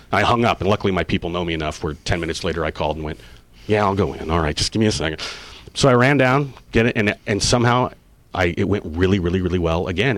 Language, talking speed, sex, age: English, 270 wpm, male, 40-59